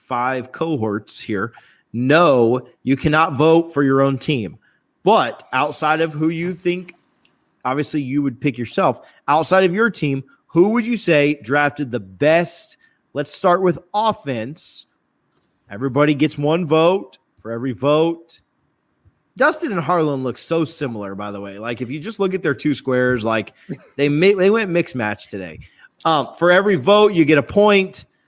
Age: 30-49